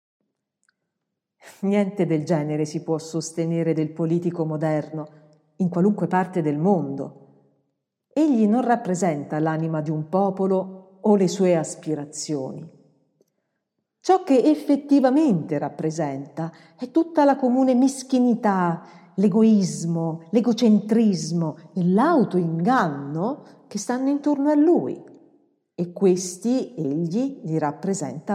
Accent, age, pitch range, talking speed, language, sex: native, 50-69, 165-250 Hz, 100 wpm, Italian, female